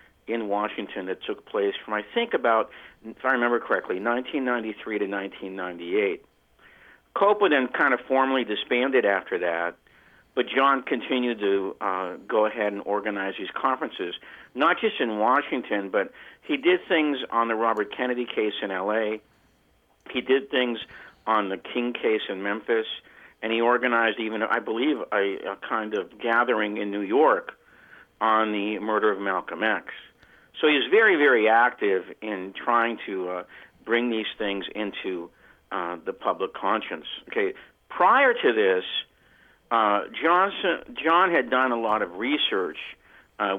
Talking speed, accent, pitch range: 150 wpm, American, 105-135 Hz